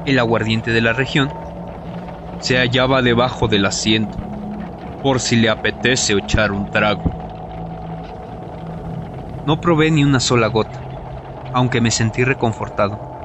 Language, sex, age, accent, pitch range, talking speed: Spanish, male, 30-49, Mexican, 115-135 Hz, 120 wpm